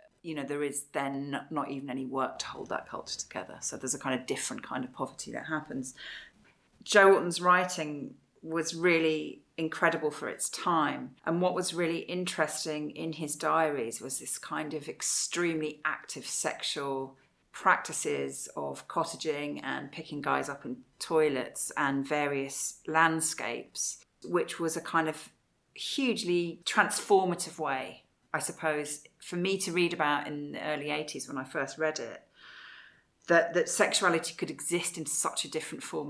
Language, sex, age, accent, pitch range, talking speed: English, female, 40-59, British, 140-170 Hz, 160 wpm